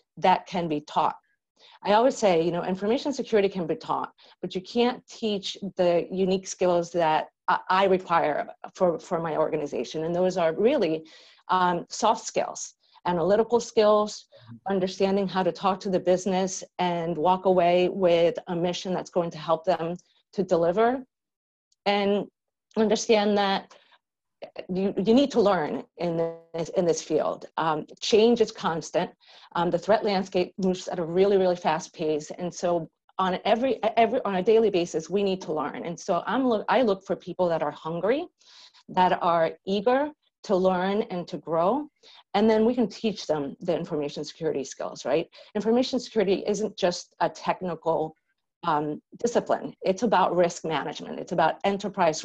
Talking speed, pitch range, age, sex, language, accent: 165 wpm, 170-210 Hz, 40-59, female, English, American